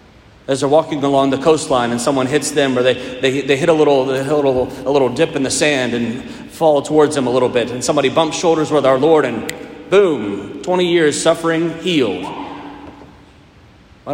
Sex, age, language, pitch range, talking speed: male, 40-59, English, 110-150 Hz, 205 wpm